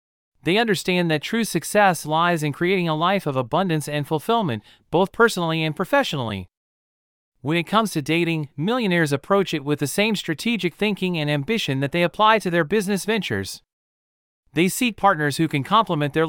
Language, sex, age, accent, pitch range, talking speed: English, male, 40-59, American, 150-195 Hz, 175 wpm